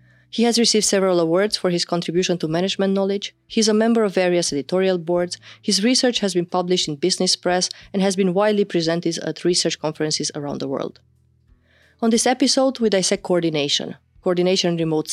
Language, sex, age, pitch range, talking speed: English, female, 30-49, 160-210 Hz, 180 wpm